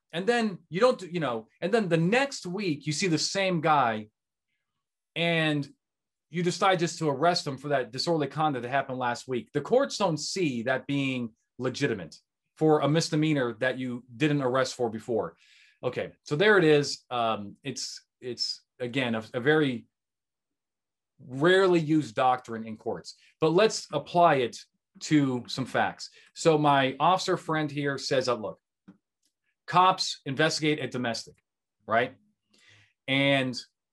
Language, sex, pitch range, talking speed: English, male, 125-165 Hz, 150 wpm